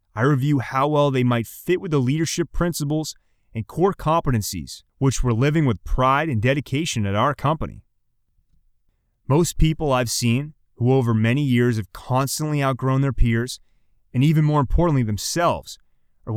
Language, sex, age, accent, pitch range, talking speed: English, male, 30-49, American, 110-150 Hz, 160 wpm